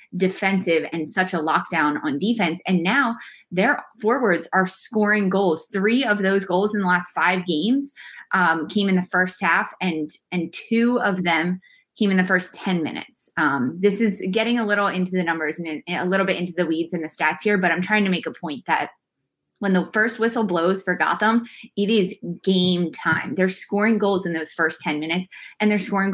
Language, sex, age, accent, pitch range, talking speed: English, female, 20-39, American, 165-210 Hz, 205 wpm